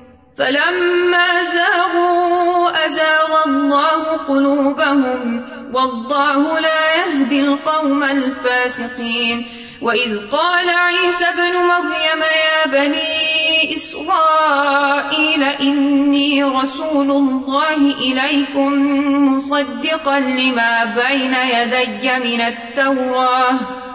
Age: 20-39